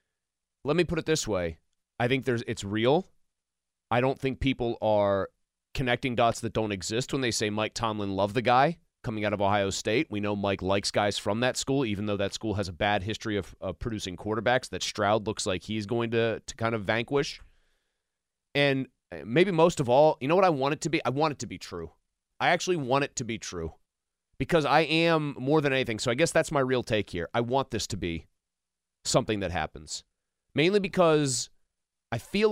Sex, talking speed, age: male, 215 wpm, 30-49